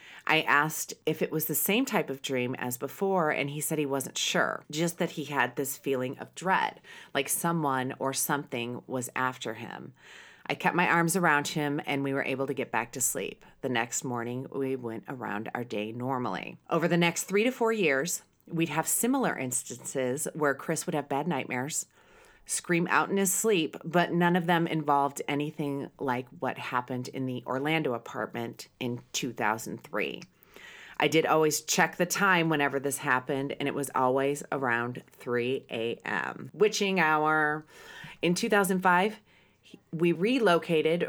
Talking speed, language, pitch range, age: 170 wpm, English, 135-170 Hz, 30-49